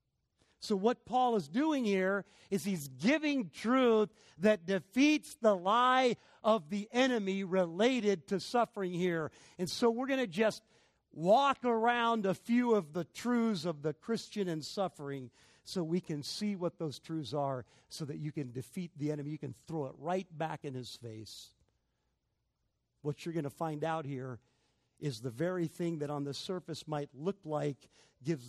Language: English